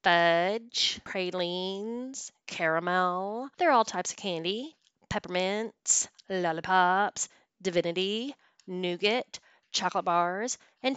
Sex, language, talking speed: female, English, 80 wpm